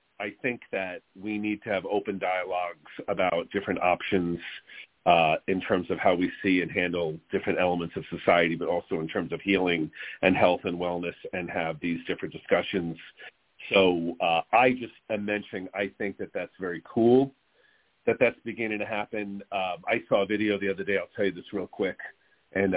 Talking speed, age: 190 wpm, 40-59